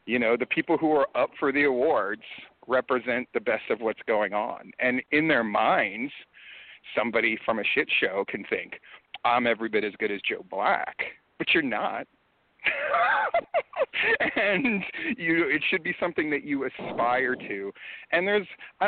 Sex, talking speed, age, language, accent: male, 165 wpm, 40-59, English, American